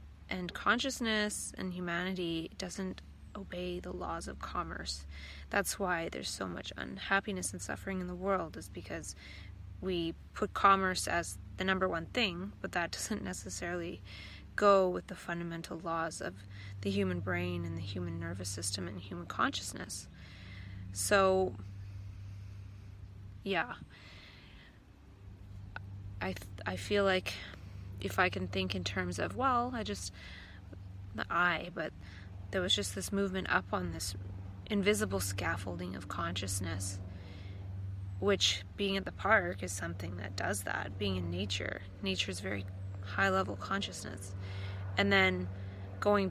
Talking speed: 135 wpm